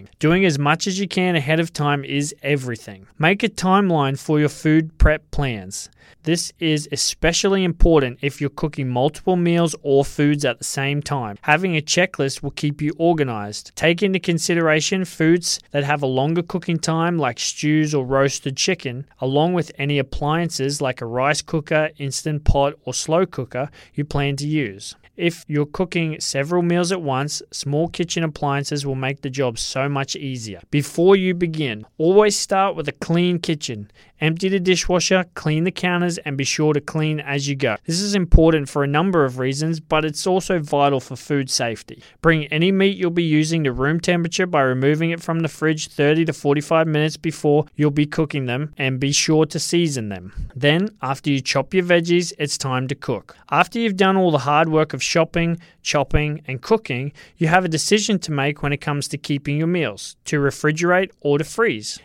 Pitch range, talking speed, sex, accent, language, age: 140-170 Hz, 190 wpm, male, Australian, English, 20-39